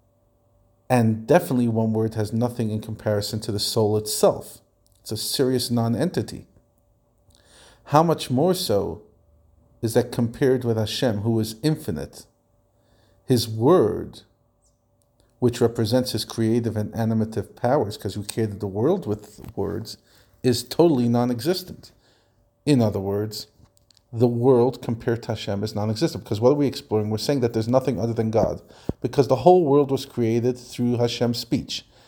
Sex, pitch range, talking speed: male, 110-120 Hz, 150 wpm